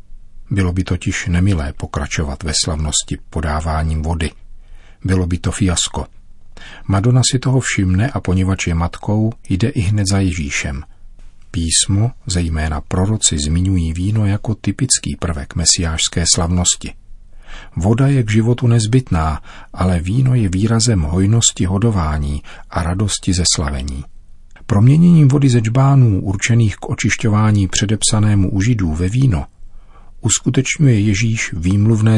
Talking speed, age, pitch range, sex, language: 125 wpm, 40-59, 90-115 Hz, male, Czech